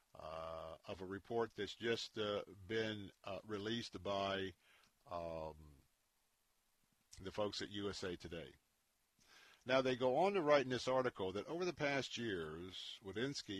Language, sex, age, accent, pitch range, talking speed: English, male, 50-69, American, 100-130 Hz, 140 wpm